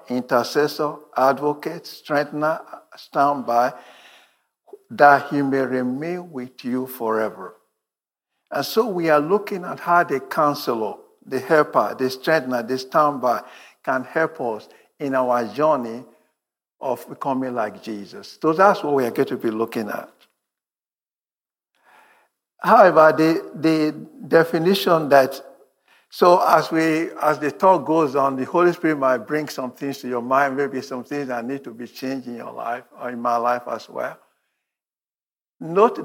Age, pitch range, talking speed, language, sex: 60-79, 125-160 Hz, 145 wpm, English, male